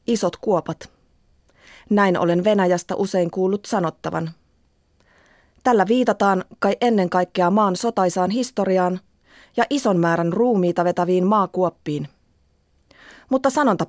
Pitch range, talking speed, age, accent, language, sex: 160-205 Hz, 105 wpm, 30-49, native, Finnish, female